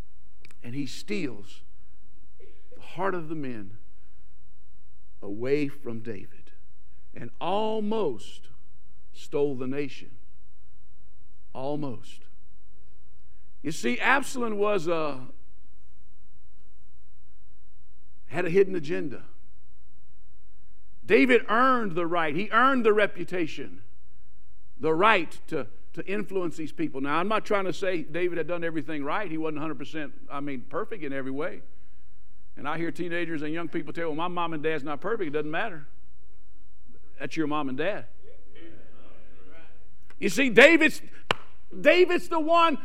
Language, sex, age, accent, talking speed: English, male, 60-79, American, 125 wpm